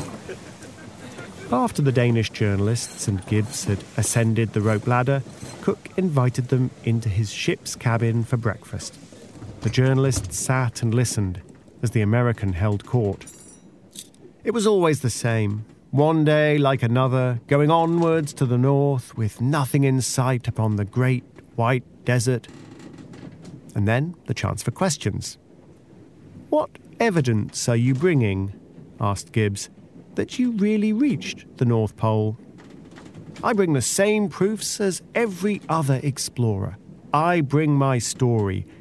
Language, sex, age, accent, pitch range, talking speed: English, male, 40-59, British, 110-150 Hz, 135 wpm